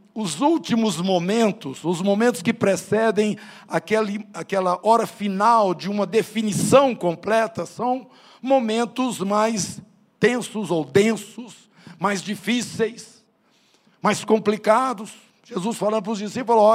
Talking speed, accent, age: 105 wpm, Brazilian, 60-79